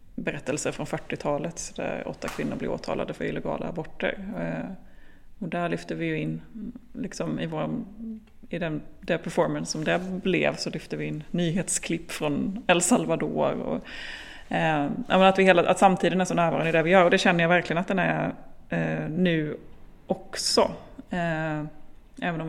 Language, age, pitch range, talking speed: Swedish, 30-49, 160-190 Hz, 165 wpm